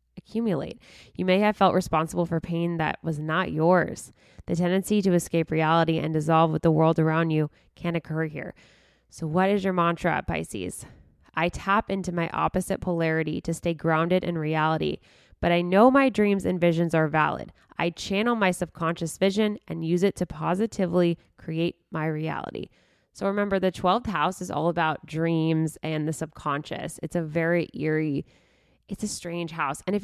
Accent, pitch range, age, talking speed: American, 160-185 Hz, 20-39, 175 wpm